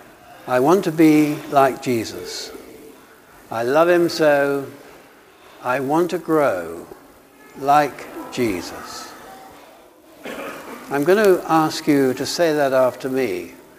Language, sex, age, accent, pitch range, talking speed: English, male, 60-79, British, 150-190 Hz, 115 wpm